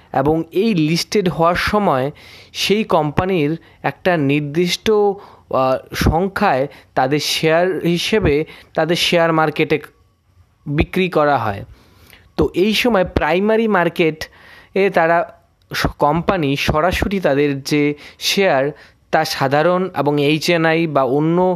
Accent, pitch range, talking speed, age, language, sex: native, 135-180 Hz, 85 wpm, 20-39, Bengali, male